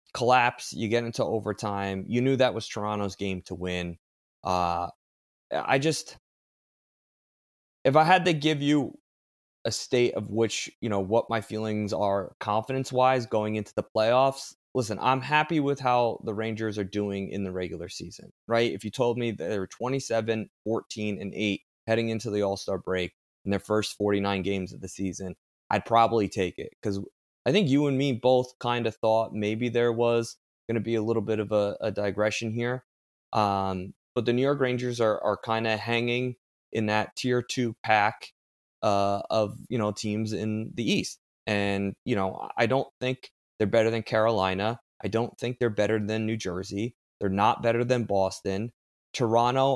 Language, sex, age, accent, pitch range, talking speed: English, male, 20-39, American, 100-120 Hz, 180 wpm